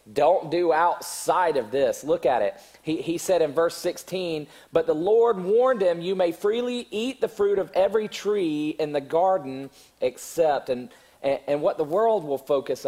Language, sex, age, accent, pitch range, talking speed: English, male, 40-59, American, 155-260 Hz, 185 wpm